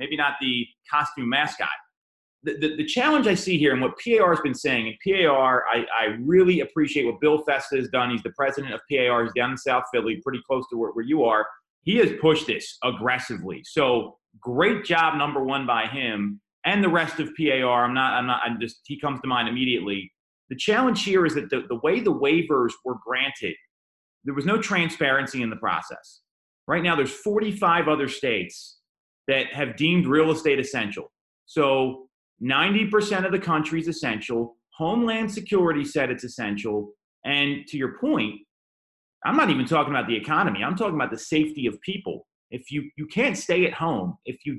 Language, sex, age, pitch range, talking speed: English, male, 30-49, 125-165 Hz, 190 wpm